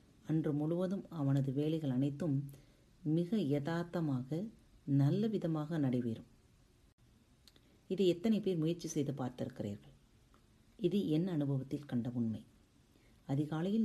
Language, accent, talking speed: Tamil, native, 95 wpm